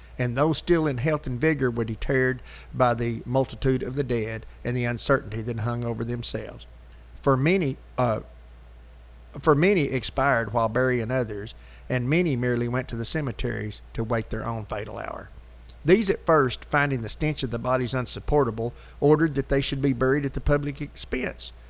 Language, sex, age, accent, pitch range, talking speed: English, male, 50-69, American, 115-145 Hz, 175 wpm